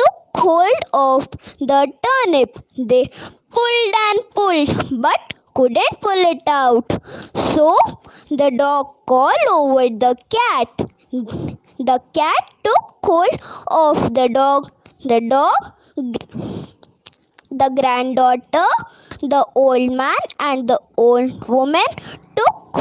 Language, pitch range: English, 255-330 Hz